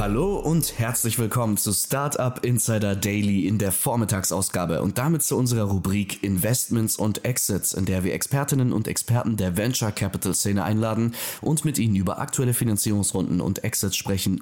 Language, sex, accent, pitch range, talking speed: German, male, German, 100-120 Hz, 160 wpm